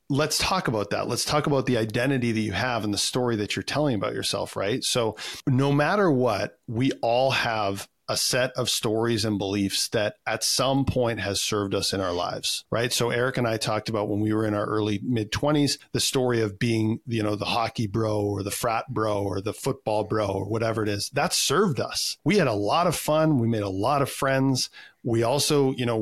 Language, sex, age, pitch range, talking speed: English, male, 40-59, 105-130 Hz, 230 wpm